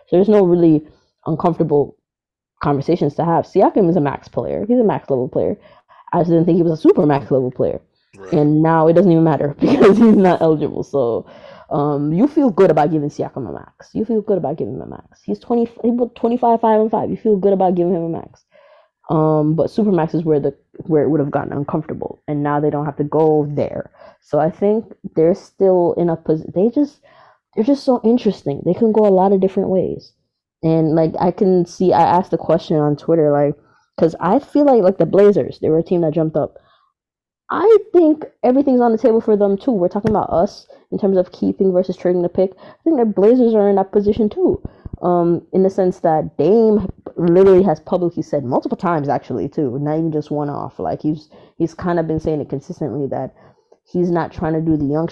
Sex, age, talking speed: female, 20-39, 225 wpm